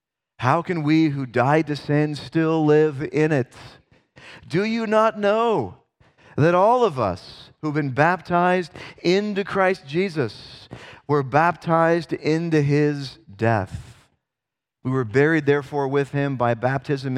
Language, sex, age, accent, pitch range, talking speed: English, male, 40-59, American, 135-185 Hz, 135 wpm